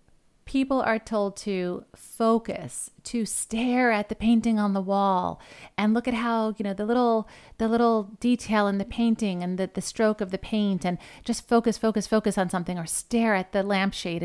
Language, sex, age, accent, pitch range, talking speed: English, female, 40-59, American, 180-215 Hz, 195 wpm